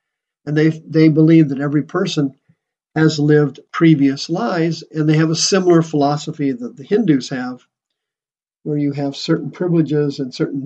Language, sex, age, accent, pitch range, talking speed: English, male, 50-69, American, 140-170 Hz, 160 wpm